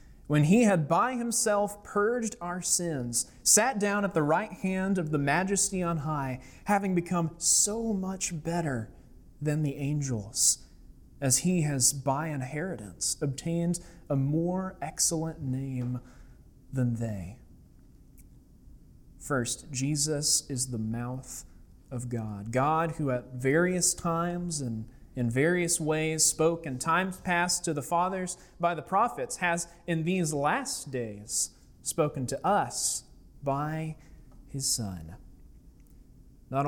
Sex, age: male, 30-49